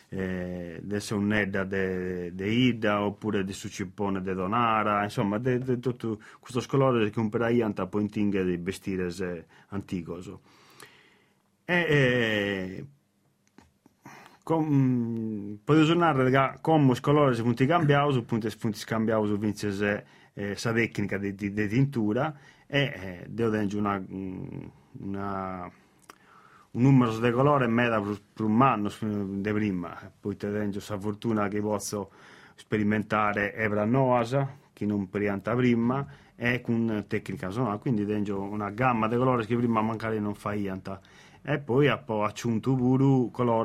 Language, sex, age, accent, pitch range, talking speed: Italian, male, 30-49, native, 100-125 Hz, 135 wpm